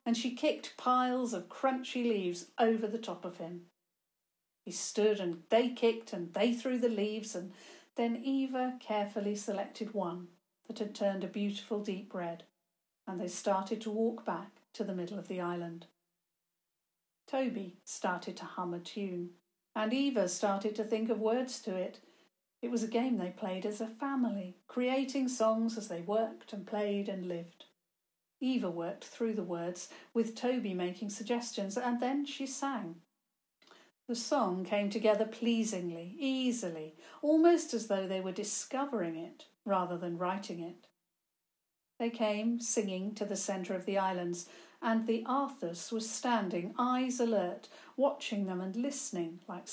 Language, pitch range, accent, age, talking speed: English, 180-235 Hz, British, 50-69, 160 wpm